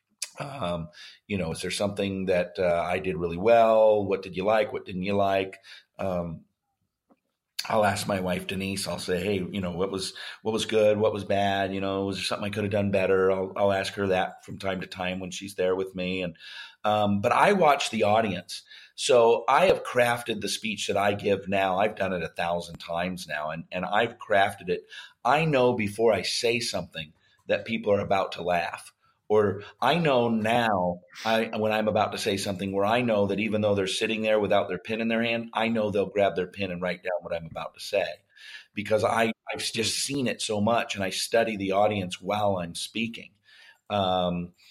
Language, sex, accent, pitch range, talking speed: English, male, American, 95-110 Hz, 215 wpm